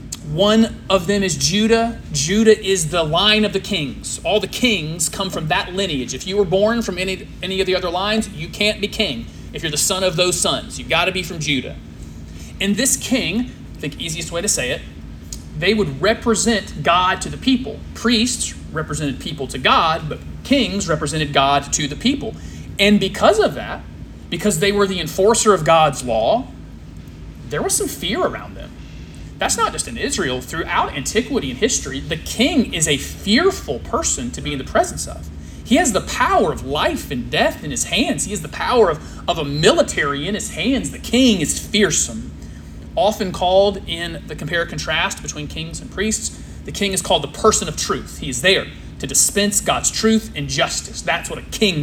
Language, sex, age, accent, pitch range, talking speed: English, male, 30-49, American, 145-210 Hz, 200 wpm